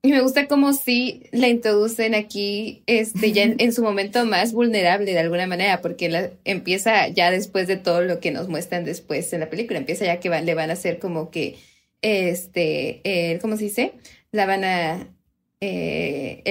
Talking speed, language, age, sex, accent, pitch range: 185 wpm, Spanish, 20-39, female, Mexican, 175-220 Hz